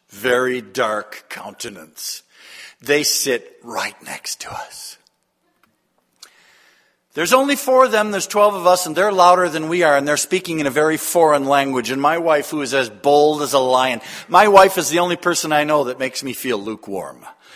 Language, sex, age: English, male, 50-69